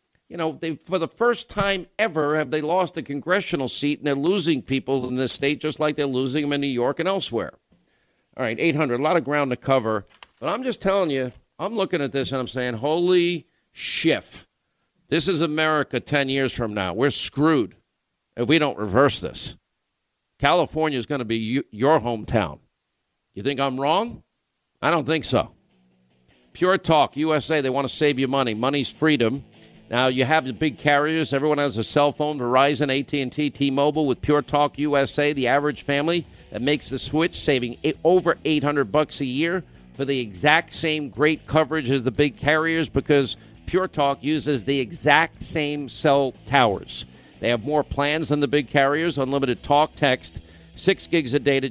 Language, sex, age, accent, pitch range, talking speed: English, male, 50-69, American, 130-155 Hz, 185 wpm